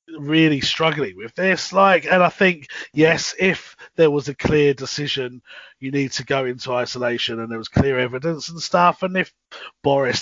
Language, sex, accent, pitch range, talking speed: English, male, British, 140-180 Hz, 180 wpm